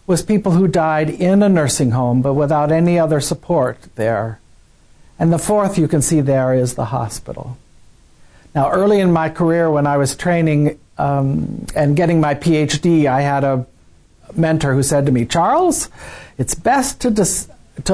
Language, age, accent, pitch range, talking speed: English, 60-79, American, 145-200 Hz, 175 wpm